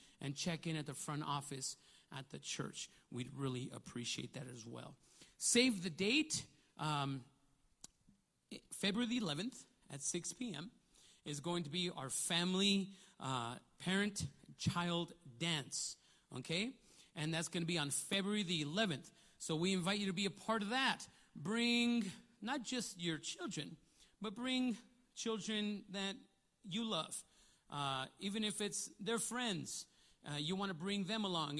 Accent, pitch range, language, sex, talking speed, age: American, 160-220 Hz, English, male, 150 wpm, 40-59